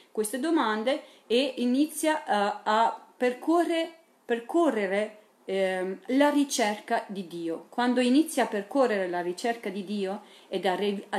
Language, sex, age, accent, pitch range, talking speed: Italian, female, 40-59, native, 195-270 Hz, 125 wpm